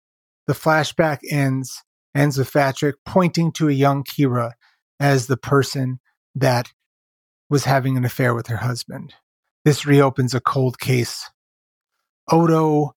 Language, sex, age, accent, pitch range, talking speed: English, male, 30-49, American, 125-140 Hz, 130 wpm